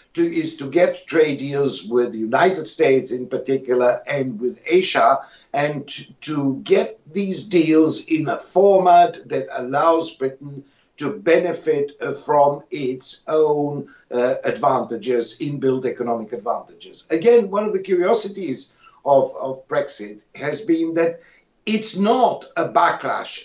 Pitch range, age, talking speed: 130-185 Hz, 60-79, 130 wpm